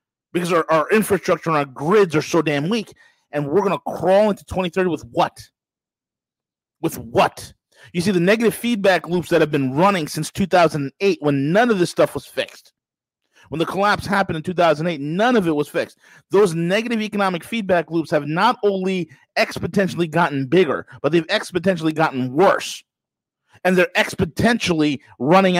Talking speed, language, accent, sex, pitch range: 170 wpm, English, American, male, 135-190 Hz